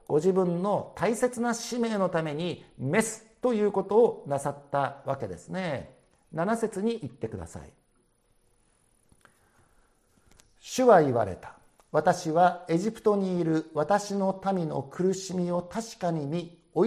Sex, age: male, 50-69